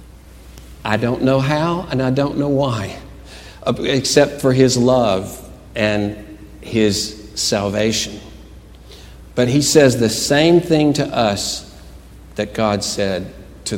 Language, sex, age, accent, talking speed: English, male, 60-79, American, 120 wpm